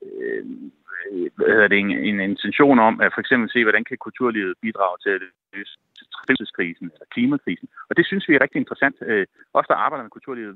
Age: 30-49